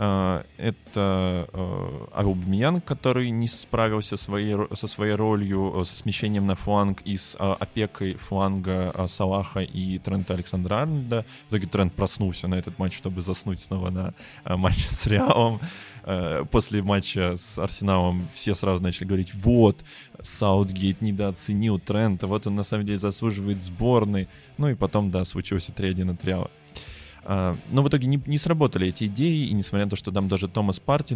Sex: male